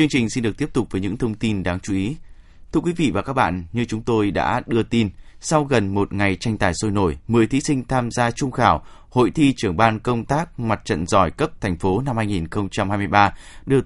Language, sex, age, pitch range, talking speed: Vietnamese, male, 20-39, 100-130 Hz, 240 wpm